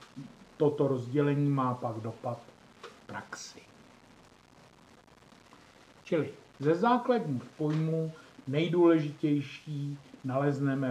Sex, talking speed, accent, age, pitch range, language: male, 70 wpm, native, 50-69, 125-155 Hz, Czech